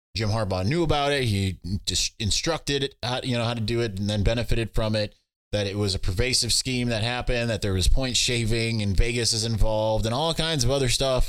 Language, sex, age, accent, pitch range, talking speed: English, male, 20-39, American, 100-120 Hz, 225 wpm